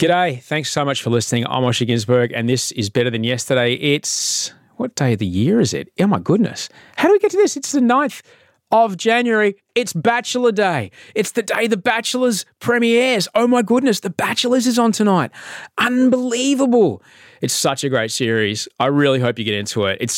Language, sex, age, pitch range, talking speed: English, male, 30-49, 110-175 Hz, 200 wpm